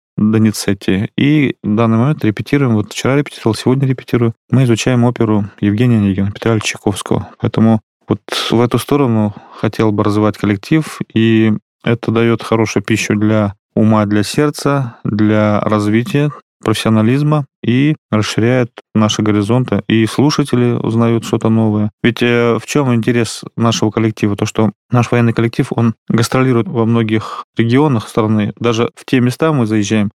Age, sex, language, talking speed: 20-39, male, Russian, 140 wpm